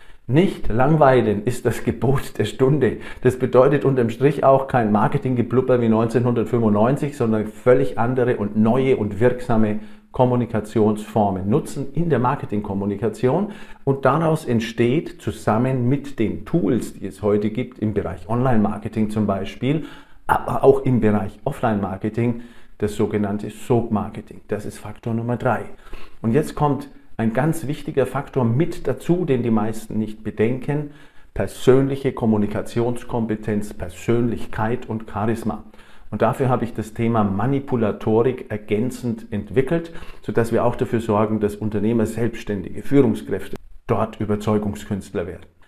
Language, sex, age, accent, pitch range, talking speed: German, male, 50-69, German, 110-130 Hz, 125 wpm